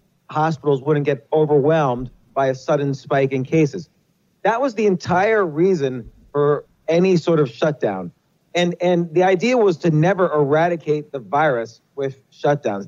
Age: 40-59